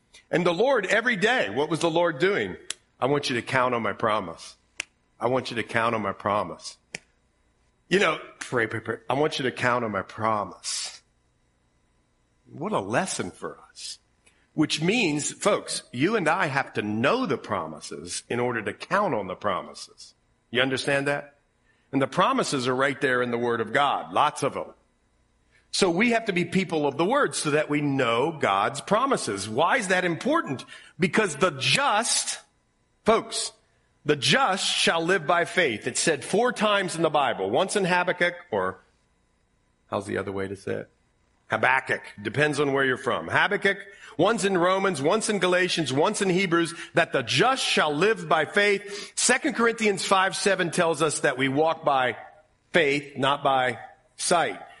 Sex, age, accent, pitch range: male, 50-69, American, 120-185 Hz